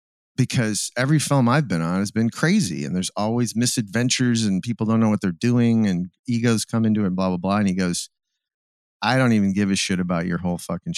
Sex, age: male, 50-69